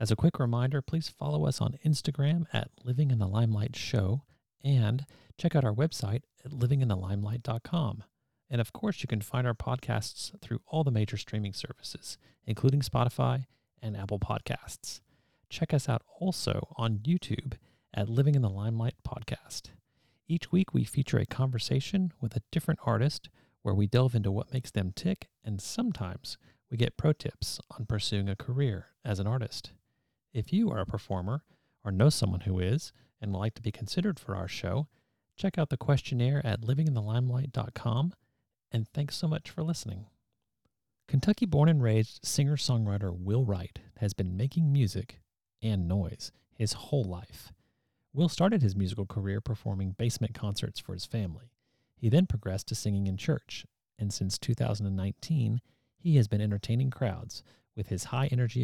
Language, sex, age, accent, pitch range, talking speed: English, male, 40-59, American, 105-140 Hz, 165 wpm